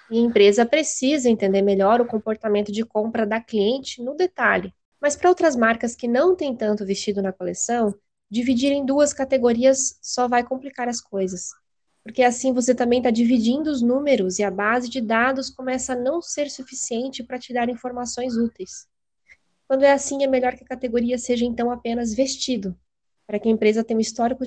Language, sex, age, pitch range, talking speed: Portuguese, female, 20-39, 205-255 Hz, 185 wpm